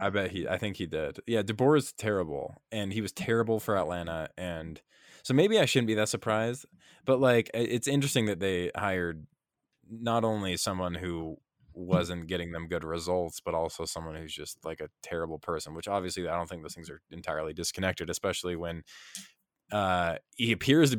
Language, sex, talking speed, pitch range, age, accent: English, male, 190 wpm, 85-105 Hz, 20-39, American